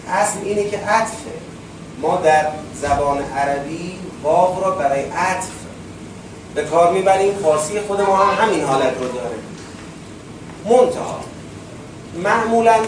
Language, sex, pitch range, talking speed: Persian, male, 155-205 Hz, 115 wpm